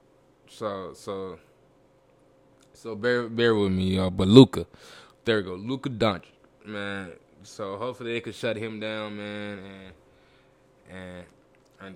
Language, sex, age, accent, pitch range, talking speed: English, male, 10-29, American, 95-110 Hz, 140 wpm